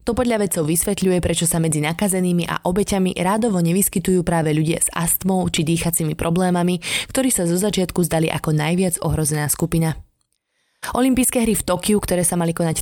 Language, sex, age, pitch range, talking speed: Slovak, female, 20-39, 165-200 Hz, 170 wpm